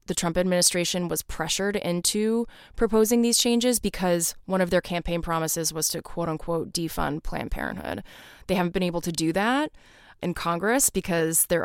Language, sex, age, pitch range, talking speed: English, female, 20-39, 165-200 Hz, 170 wpm